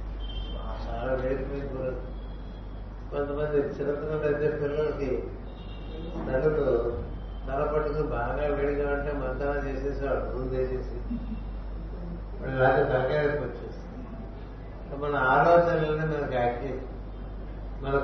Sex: male